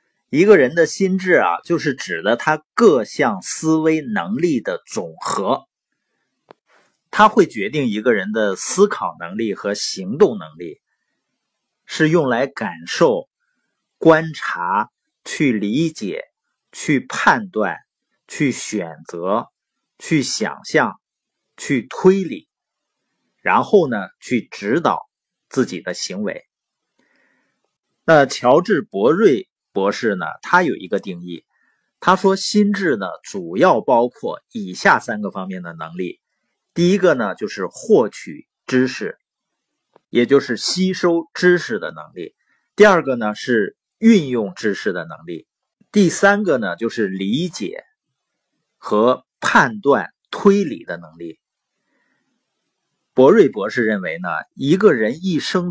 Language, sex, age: Chinese, male, 50-69